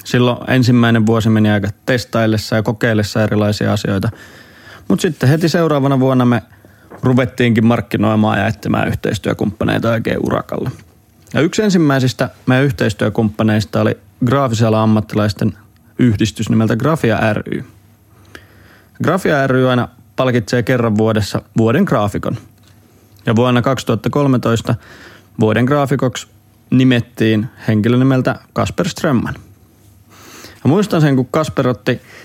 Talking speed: 110 wpm